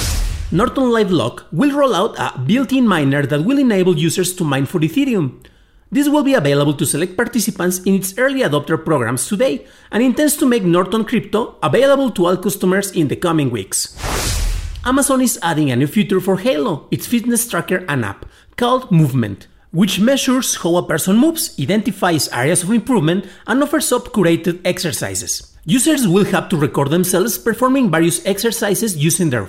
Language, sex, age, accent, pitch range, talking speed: English, male, 40-59, Mexican, 160-230 Hz, 170 wpm